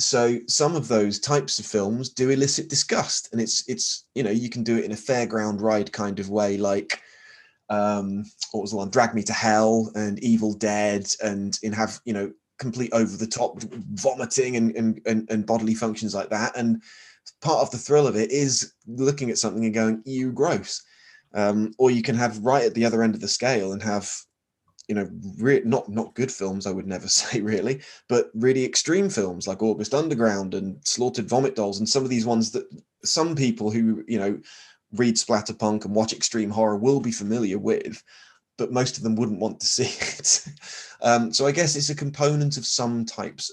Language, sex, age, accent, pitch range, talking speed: English, male, 20-39, British, 105-125 Hz, 205 wpm